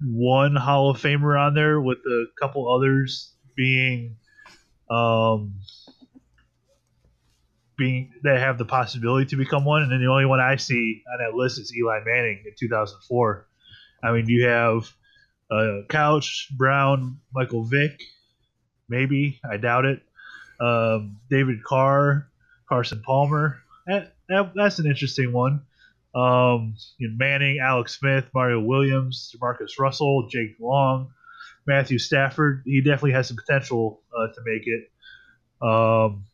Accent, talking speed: American, 135 wpm